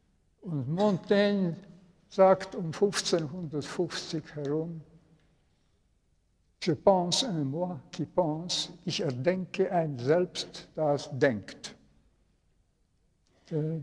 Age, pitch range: 60-79, 140-170 Hz